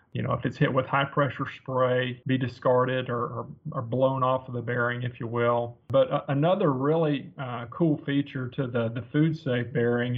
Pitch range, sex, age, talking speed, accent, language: 125-150 Hz, male, 40-59, 205 wpm, American, English